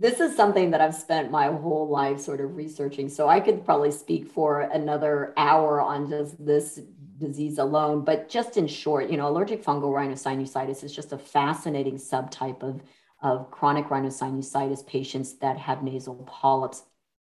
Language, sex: English, female